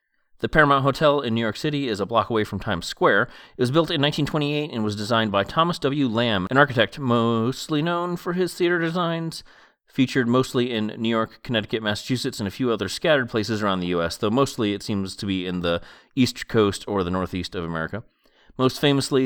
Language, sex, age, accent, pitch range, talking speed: English, male, 30-49, American, 100-140 Hz, 210 wpm